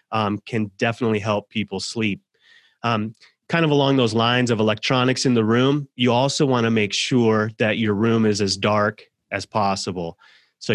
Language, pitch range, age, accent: English, 105-125 Hz, 30-49, American